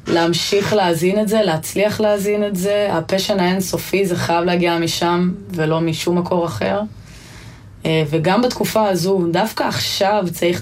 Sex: female